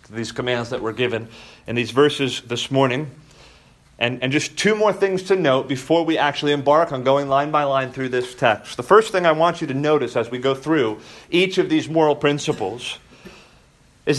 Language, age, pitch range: English, 30-49, 130-180 Hz